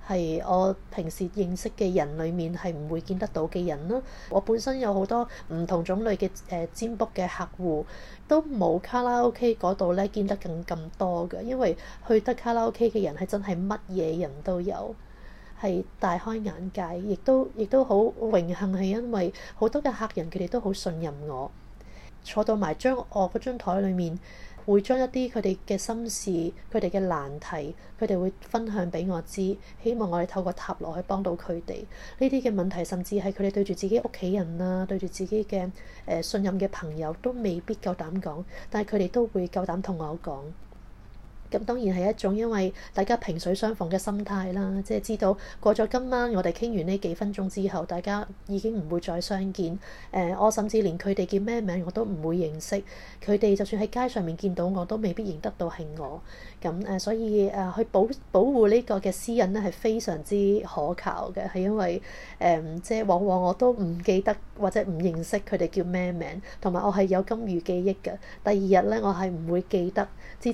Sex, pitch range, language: female, 175-215 Hz, Chinese